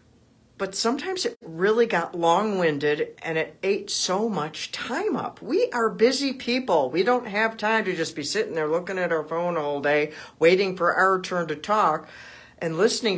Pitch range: 165-235 Hz